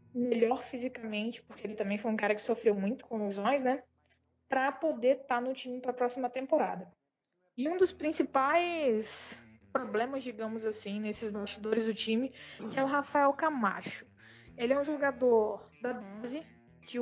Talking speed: 165 wpm